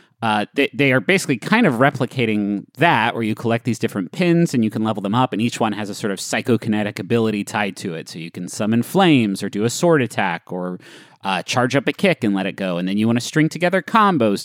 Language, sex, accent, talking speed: English, male, American, 255 wpm